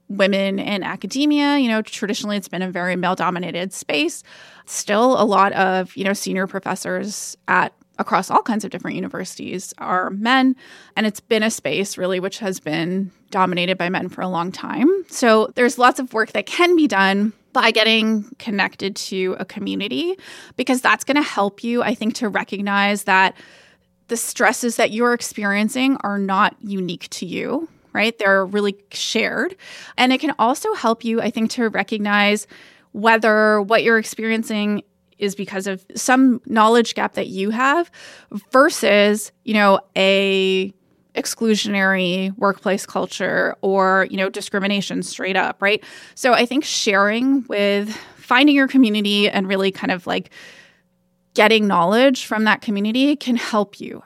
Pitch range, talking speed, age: 195-235 Hz, 160 wpm, 20-39